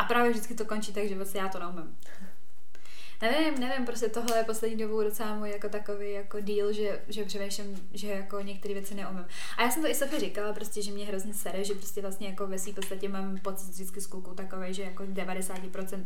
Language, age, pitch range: Czech, 20-39, 190-215 Hz